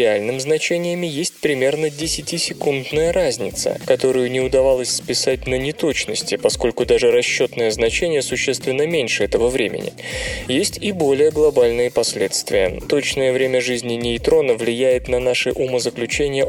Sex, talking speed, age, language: male, 115 wpm, 20-39, Russian